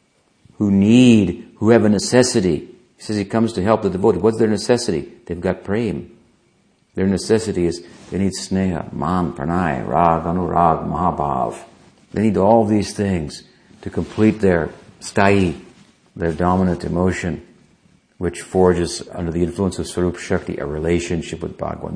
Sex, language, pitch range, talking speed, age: male, English, 85-105 Hz, 150 wpm, 60-79